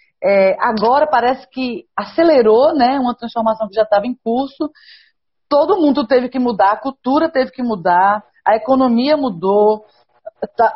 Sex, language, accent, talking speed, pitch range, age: female, Portuguese, Brazilian, 150 wpm, 200-255 Hz, 40-59